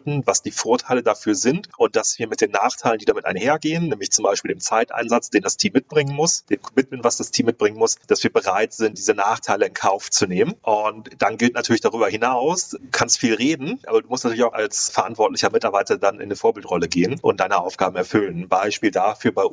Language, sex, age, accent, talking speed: German, male, 30-49, German, 220 wpm